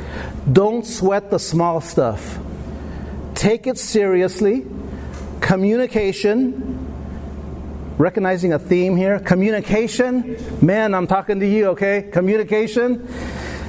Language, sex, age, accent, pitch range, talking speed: English, male, 50-69, American, 130-205 Hz, 90 wpm